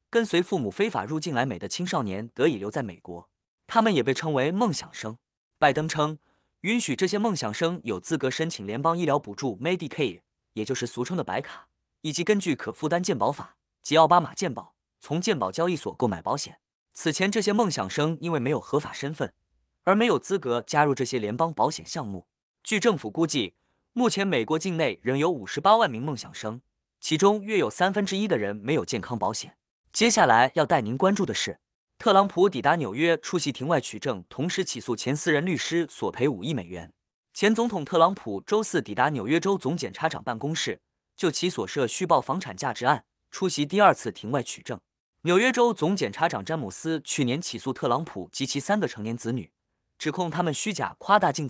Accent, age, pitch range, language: native, 20-39, 125-180 Hz, Chinese